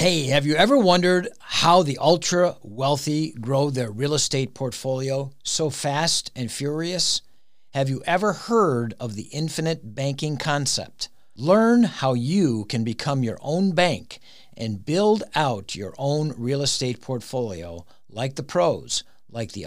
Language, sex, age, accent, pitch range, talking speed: English, male, 50-69, American, 120-165 Hz, 145 wpm